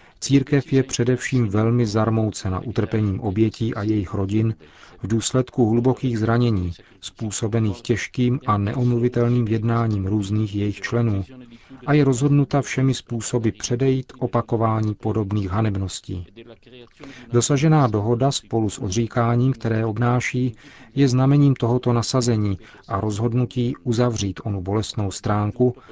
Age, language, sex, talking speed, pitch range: 40-59, Czech, male, 110 wpm, 105-125 Hz